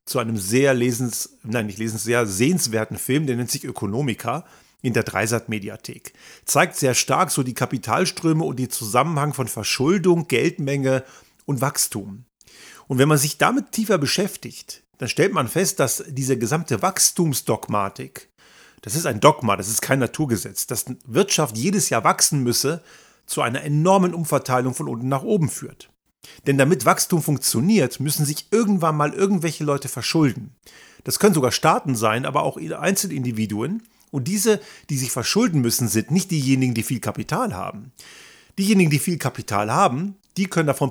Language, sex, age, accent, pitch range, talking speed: German, male, 40-59, German, 120-165 Hz, 160 wpm